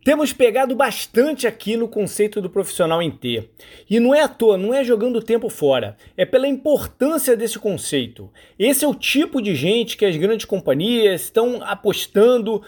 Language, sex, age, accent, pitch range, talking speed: Portuguese, male, 40-59, Brazilian, 200-265 Hz, 180 wpm